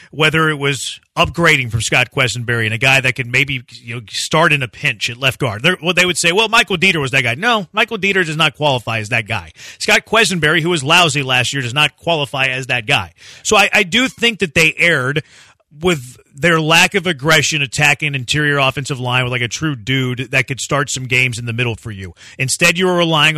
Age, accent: 30-49, American